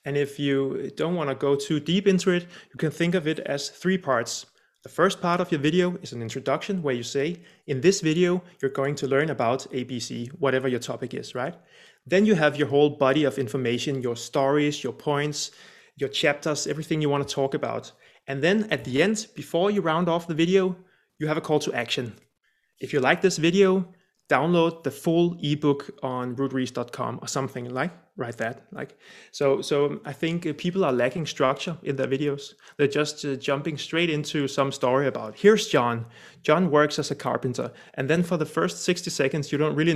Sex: male